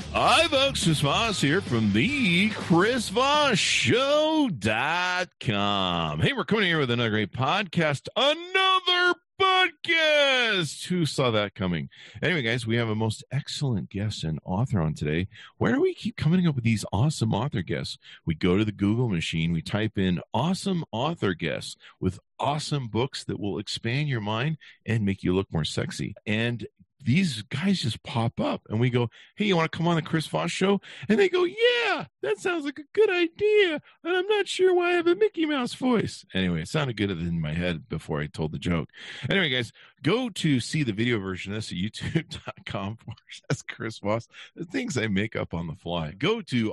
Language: English